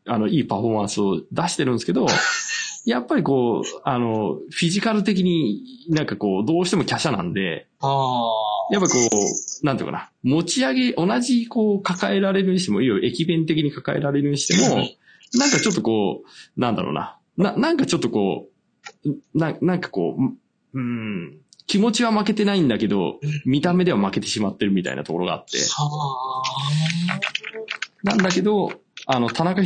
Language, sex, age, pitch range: Japanese, male, 20-39, 130-195 Hz